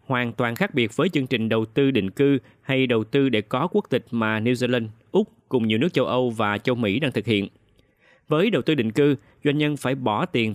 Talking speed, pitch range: 245 wpm, 115-150 Hz